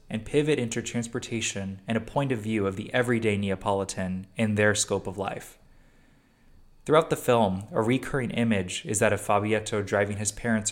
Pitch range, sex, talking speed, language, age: 100-115 Hz, male, 175 wpm, English, 20-39